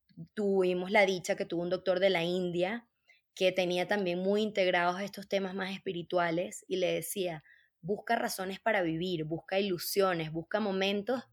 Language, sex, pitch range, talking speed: Spanish, female, 175-225 Hz, 160 wpm